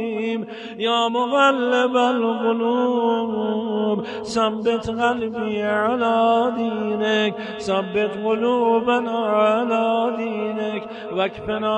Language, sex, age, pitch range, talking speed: Persian, male, 50-69, 225-245 Hz, 60 wpm